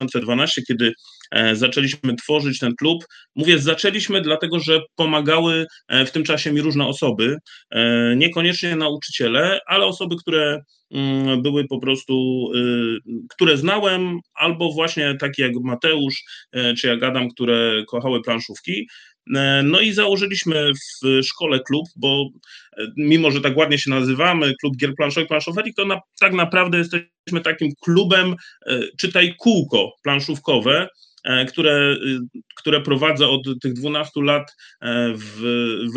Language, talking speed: Polish, 120 wpm